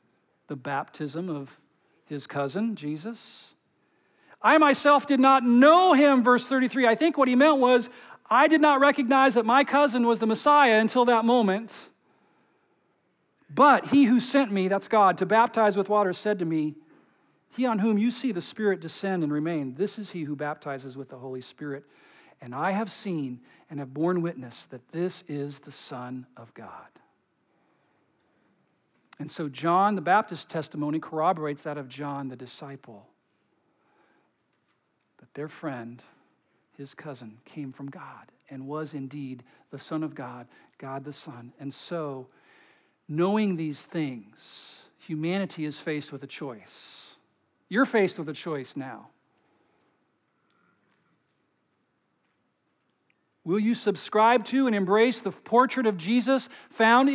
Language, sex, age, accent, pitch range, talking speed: English, male, 50-69, American, 145-240 Hz, 145 wpm